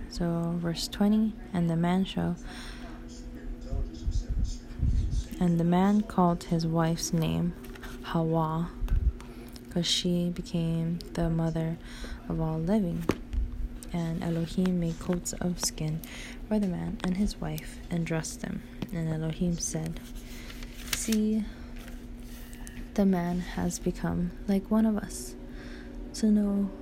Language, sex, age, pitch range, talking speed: English, female, 20-39, 160-190 Hz, 115 wpm